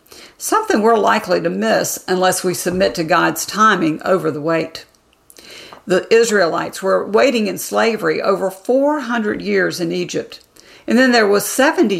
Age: 50-69